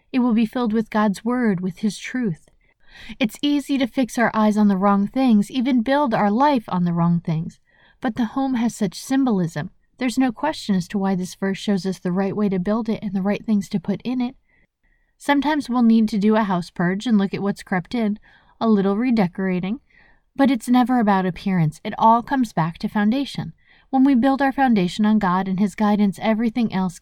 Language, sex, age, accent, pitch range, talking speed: English, female, 30-49, American, 185-230 Hz, 220 wpm